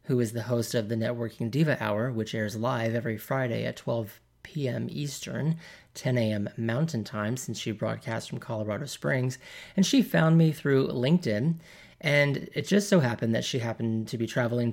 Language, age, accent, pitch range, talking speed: English, 30-49, American, 115-150 Hz, 185 wpm